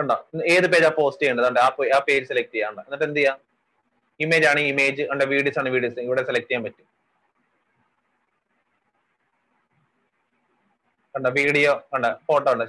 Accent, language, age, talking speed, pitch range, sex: native, Malayalam, 30-49, 80 wpm, 140-175 Hz, male